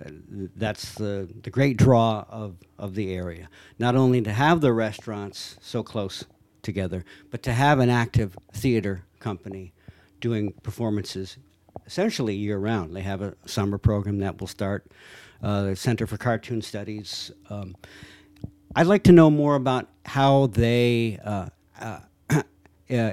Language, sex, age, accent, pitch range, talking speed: English, male, 60-79, American, 100-125 Hz, 140 wpm